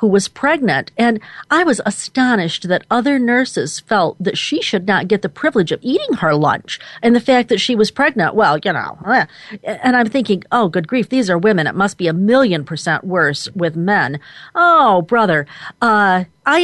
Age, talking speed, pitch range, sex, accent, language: 40-59, 195 wpm, 175-225 Hz, female, American, English